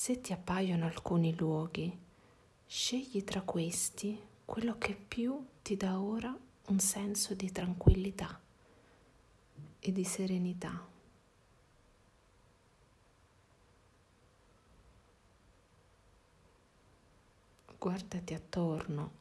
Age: 50-69